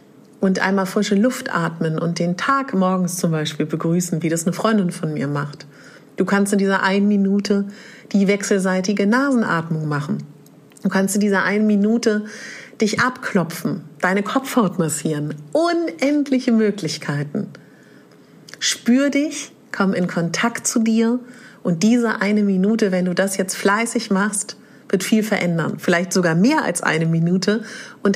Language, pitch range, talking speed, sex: German, 170-220 Hz, 145 wpm, female